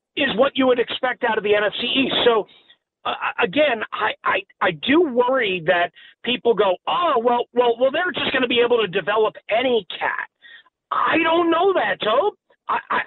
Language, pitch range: English, 200-320 Hz